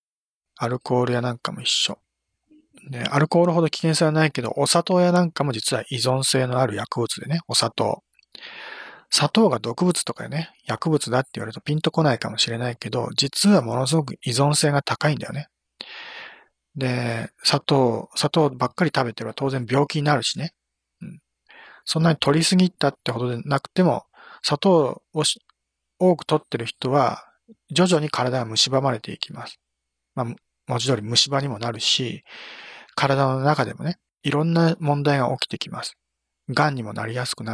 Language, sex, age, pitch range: Japanese, male, 40-59, 120-160 Hz